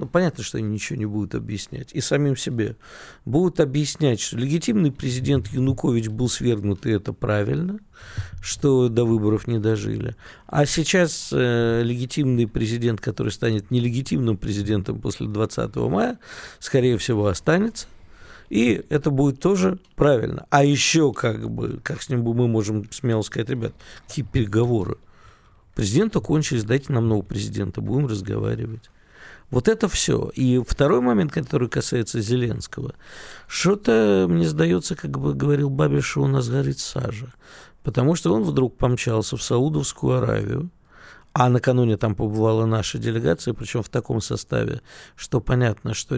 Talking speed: 140 wpm